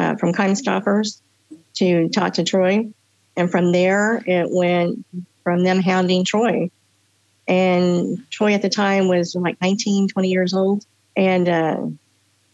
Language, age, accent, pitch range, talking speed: English, 50-69, American, 165-195 Hz, 145 wpm